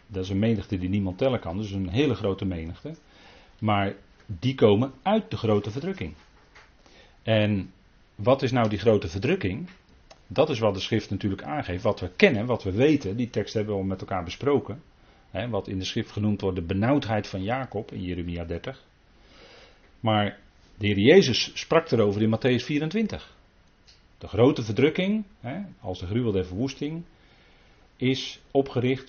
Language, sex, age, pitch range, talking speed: Dutch, male, 40-59, 95-135 Hz, 165 wpm